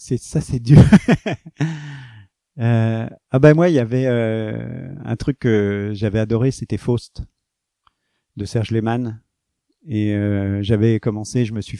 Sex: male